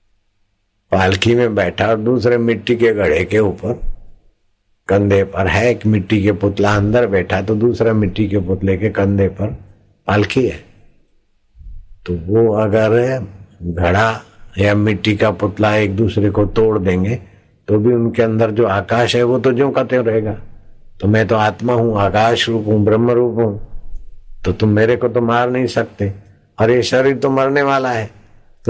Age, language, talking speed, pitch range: 60-79, Hindi, 140 wpm, 95-115 Hz